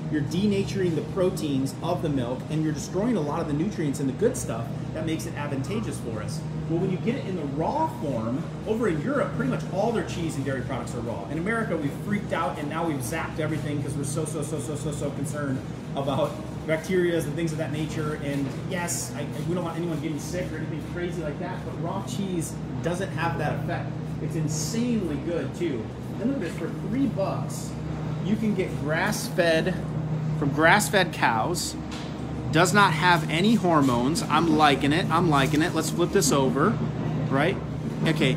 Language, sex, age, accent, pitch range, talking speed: English, male, 30-49, American, 150-170 Hz, 200 wpm